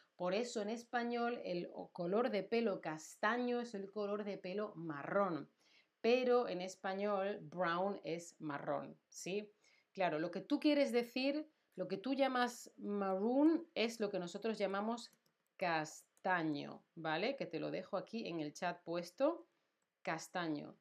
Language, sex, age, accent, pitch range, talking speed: Spanish, female, 40-59, Spanish, 180-235 Hz, 145 wpm